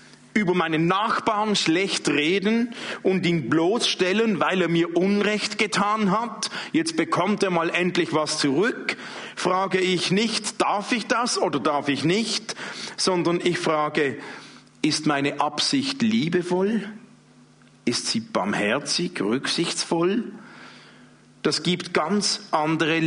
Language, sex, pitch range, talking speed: German, male, 155-205 Hz, 120 wpm